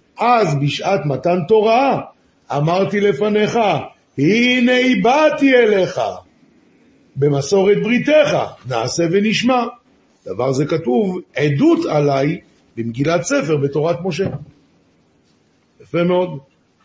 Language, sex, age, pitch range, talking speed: Hebrew, male, 50-69, 150-200 Hz, 85 wpm